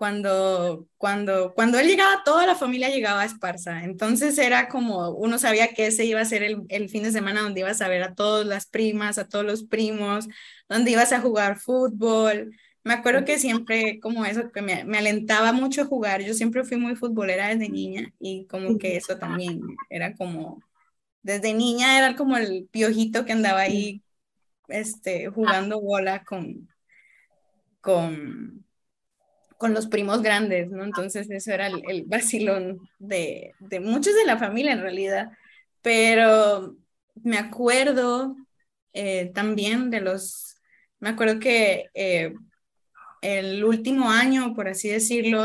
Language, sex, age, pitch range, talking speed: Spanish, female, 20-39, 195-230 Hz, 155 wpm